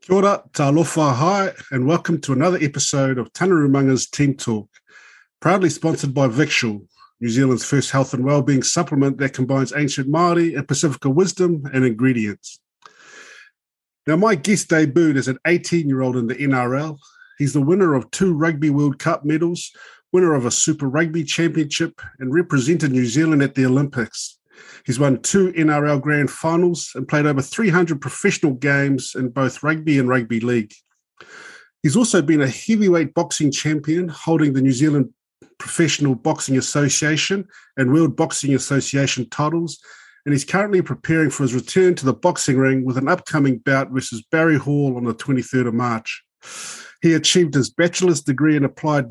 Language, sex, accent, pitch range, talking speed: English, male, Australian, 135-170 Hz, 160 wpm